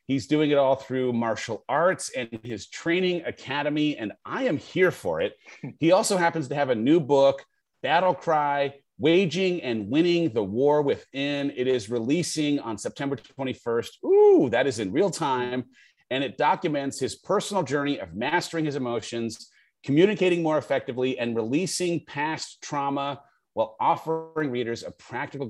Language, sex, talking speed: English, male, 160 wpm